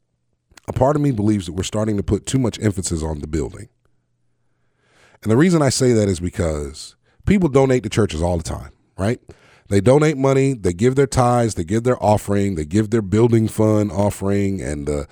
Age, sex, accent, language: 30-49, male, American, English